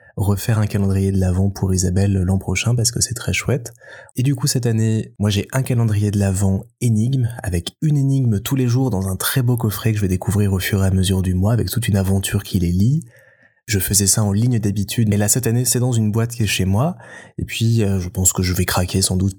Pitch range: 95-115 Hz